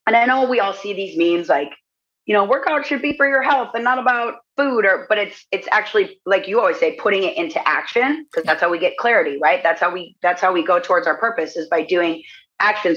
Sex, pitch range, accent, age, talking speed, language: female, 190-255 Hz, American, 30-49, 255 wpm, English